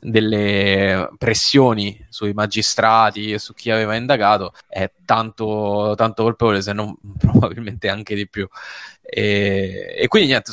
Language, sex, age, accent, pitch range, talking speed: Italian, male, 10-29, native, 105-115 Hz, 130 wpm